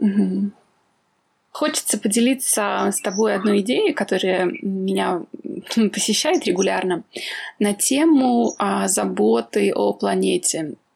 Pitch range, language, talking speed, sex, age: 190-255 Hz, Russian, 90 wpm, female, 20-39